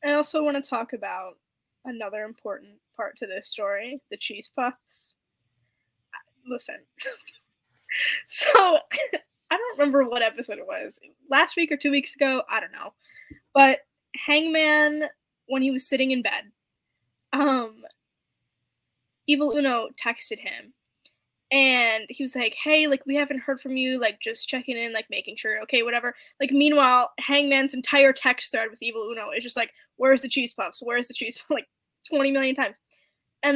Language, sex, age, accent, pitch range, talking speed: English, female, 10-29, American, 245-290 Hz, 165 wpm